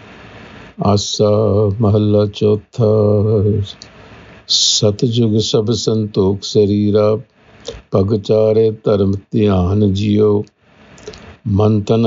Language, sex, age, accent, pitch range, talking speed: English, male, 50-69, Indian, 105-110 Hz, 65 wpm